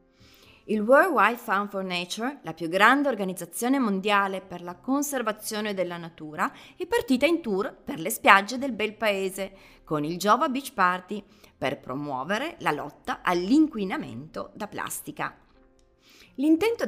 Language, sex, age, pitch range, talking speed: Italian, female, 30-49, 185-275 Hz, 140 wpm